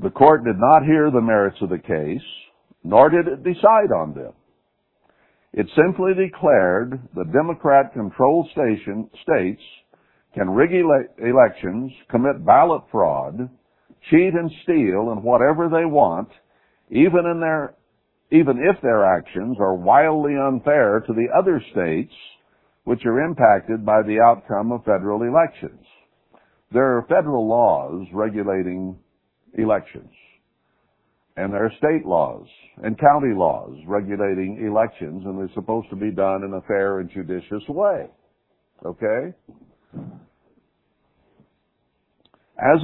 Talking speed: 125 wpm